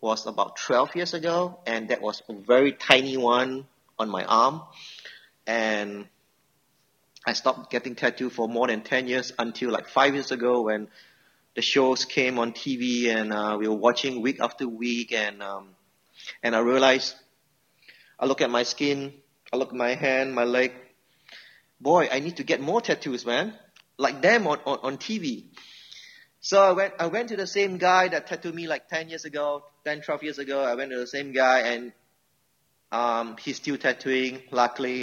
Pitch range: 115-140 Hz